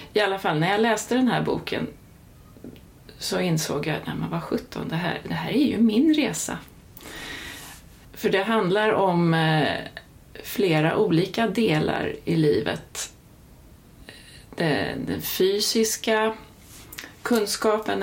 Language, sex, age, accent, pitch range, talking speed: Swedish, female, 30-49, native, 155-205 Hz, 115 wpm